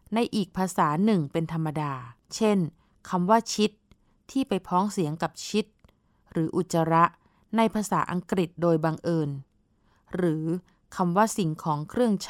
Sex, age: female, 20-39